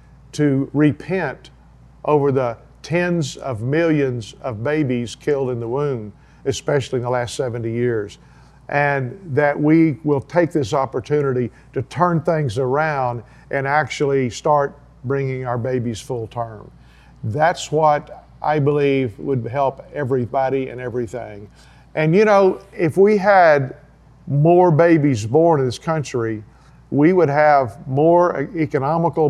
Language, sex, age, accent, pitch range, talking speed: English, male, 50-69, American, 130-160 Hz, 130 wpm